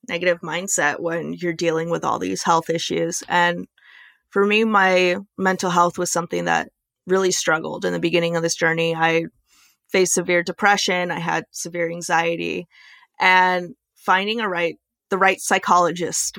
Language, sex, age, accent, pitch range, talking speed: English, female, 20-39, American, 170-195 Hz, 155 wpm